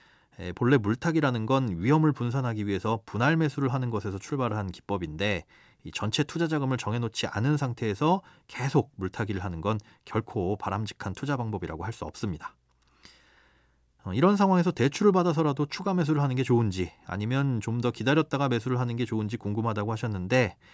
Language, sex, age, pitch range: Korean, male, 30-49, 110-155 Hz